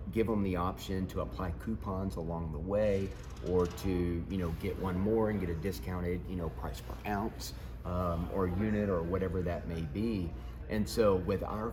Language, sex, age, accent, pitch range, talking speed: English, male, 30-49, American, 85-95 Hz, 195 wpm